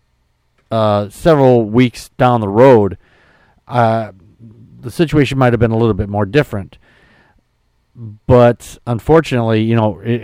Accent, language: American, English